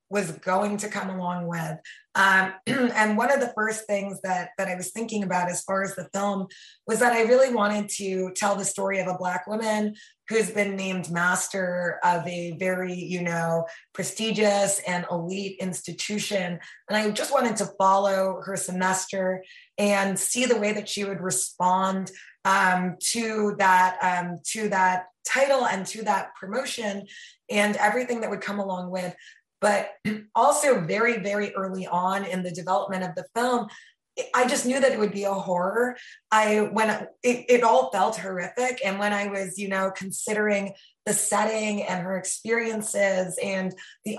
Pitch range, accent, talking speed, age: 185-215 Hz, American, 170 wpm, 20-39